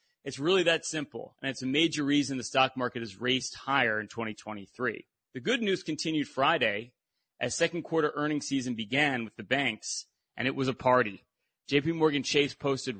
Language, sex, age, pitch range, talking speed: English, male, 30-49, 115-155 Hz, 180 wpm